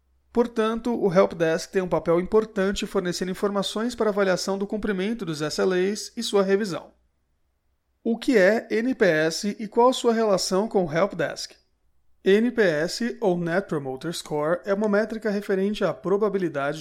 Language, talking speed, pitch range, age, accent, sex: Portuguese, 155 wpm, 170-210 Hz, 30-49, Brazilian, male